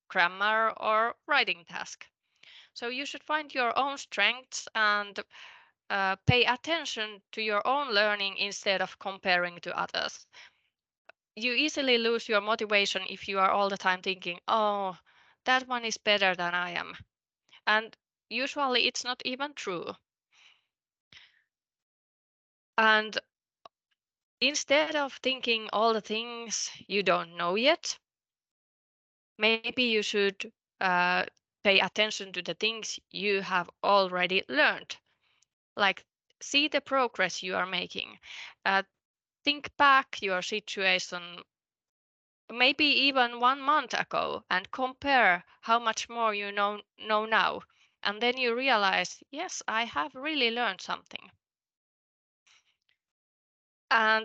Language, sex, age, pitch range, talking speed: Finnish, female, 20-39, 195-250 Hz, 125 wpm